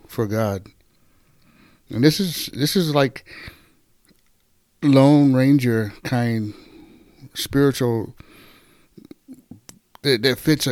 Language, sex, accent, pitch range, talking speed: English, male, American, 110-140 Hz, 85 wpm